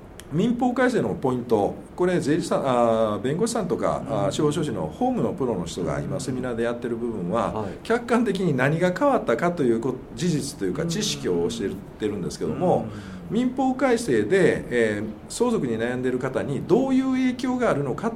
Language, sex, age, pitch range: Japanese, male, 50-69, 115-170 Hz